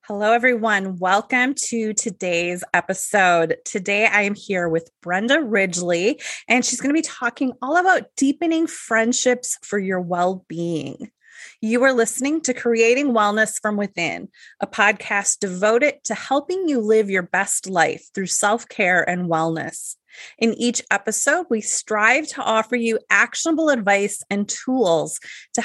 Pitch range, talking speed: 190-240 Hz, 145 wpm